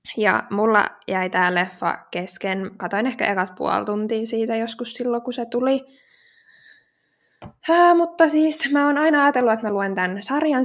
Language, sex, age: Finnish, female, 20-39